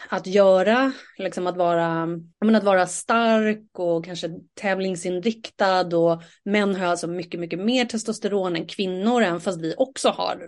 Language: Swedish